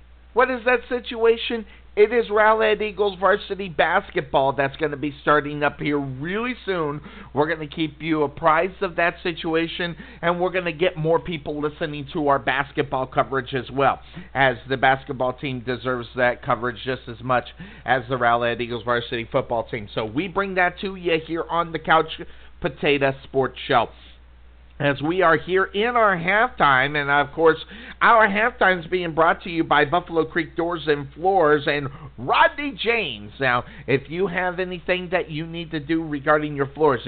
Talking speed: 180 wpm